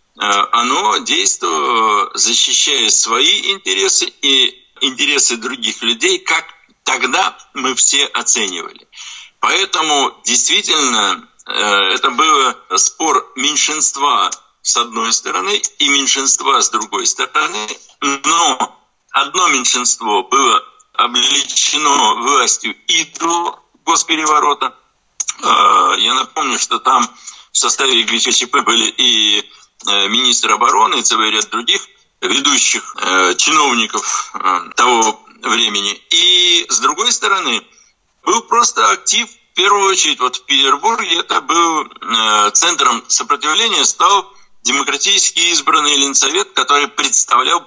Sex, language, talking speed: male, Russian, 105 wpm